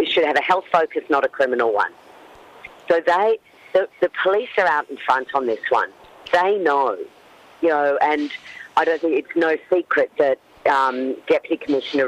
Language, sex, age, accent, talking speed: English, female, 40-59, Australian, 180 wpm